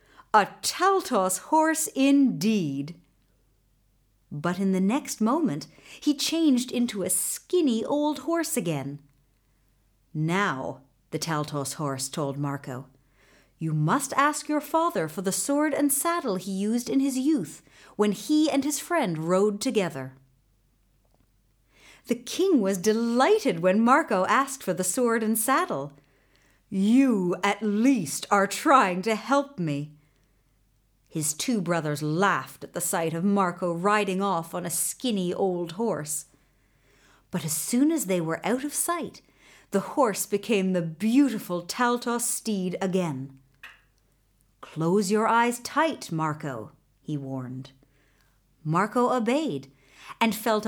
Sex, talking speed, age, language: female, 130 wpm, 50-69, English